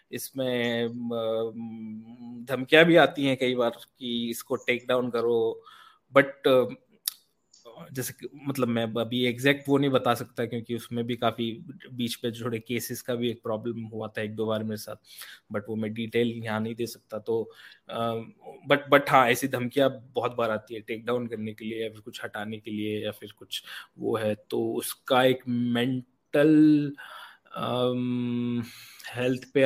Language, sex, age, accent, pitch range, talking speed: Hindi, male, 20-39, native, 115-140 Hz, 165 wpm